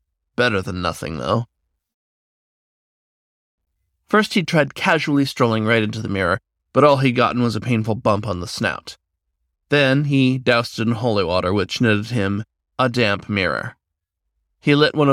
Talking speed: 160 wpm